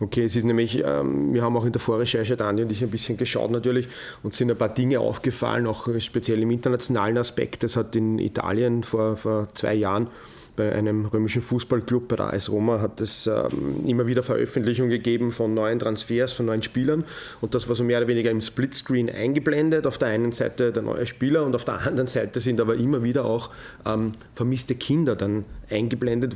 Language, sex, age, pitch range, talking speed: German, male, 30-49, 115-130 Hz, 205 wpm